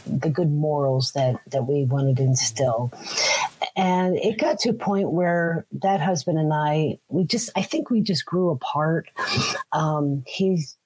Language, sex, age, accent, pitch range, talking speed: English, female, 40-59, American, 155-200 Hz, 165 wpm